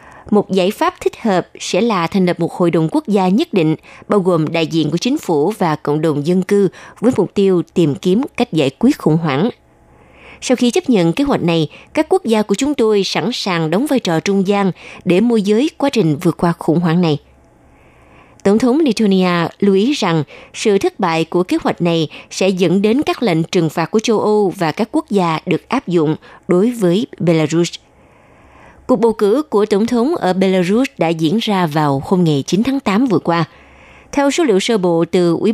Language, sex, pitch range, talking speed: Vietnamese, female, 170-225 Hz, 215 wpm